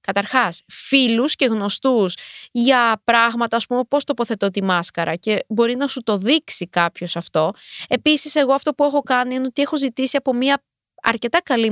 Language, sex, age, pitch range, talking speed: Greek, female, 20-39, 225-310 Hz, 175 wpm